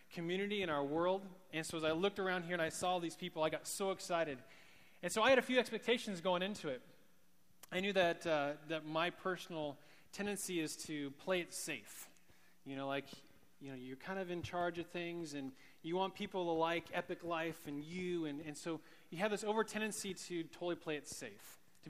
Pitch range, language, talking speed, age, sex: 150-185 Hz, English, 215 wpm, 30-49, male